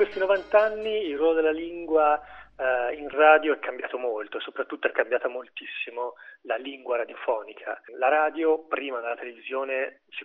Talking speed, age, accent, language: 145 wpm, 30-49, native, Italian